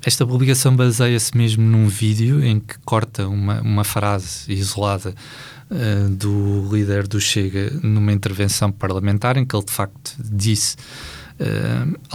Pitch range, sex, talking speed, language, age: 105-125 Hz, male, 140 wpm, Portuguese, 20-39